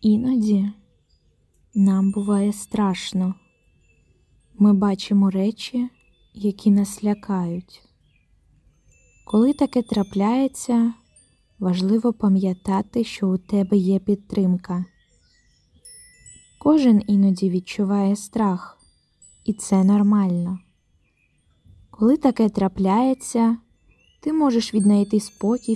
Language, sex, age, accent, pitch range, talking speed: Ukrainian, female, 20-39, native, 190-225 Hz, 80 wpm